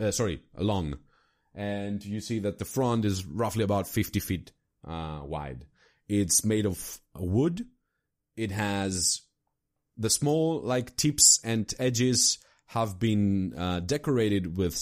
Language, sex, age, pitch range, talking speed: English, male, 30-49, 90-115 Hz, 135 wpm